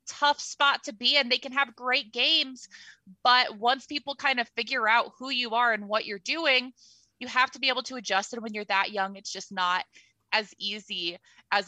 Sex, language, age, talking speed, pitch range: female, English, 20-39, 215 wpm, 195-245 Hz